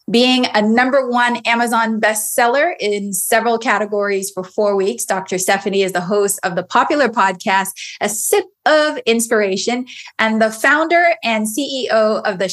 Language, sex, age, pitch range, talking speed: English, female, 20-39, 195-250 Hz, 155 wpm